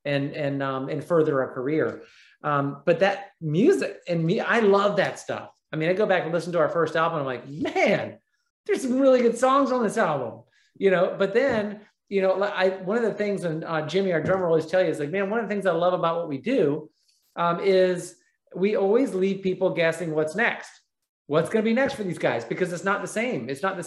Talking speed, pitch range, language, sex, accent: 240 wpm, 155-200 Hz, English, male, American